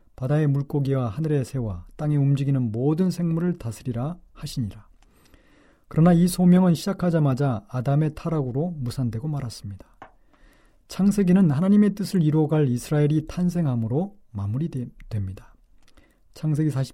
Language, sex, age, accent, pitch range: Korean, male, 40-59, native, 125-170 Hz